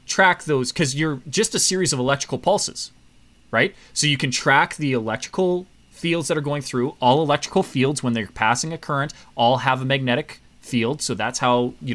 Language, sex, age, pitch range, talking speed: English, male, 30-49, 120-165 Hz, 195 wpm